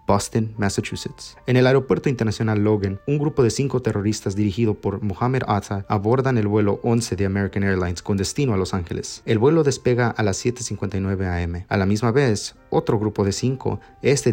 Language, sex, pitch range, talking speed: English, male, 100-120 Hz, 185 wpm